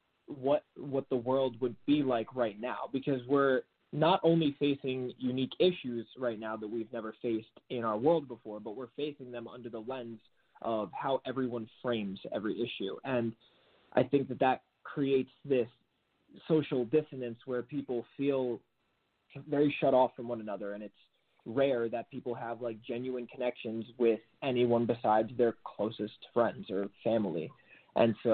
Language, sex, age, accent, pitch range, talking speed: English, male, 20-39, American, 115-135 Hz, 160 wpm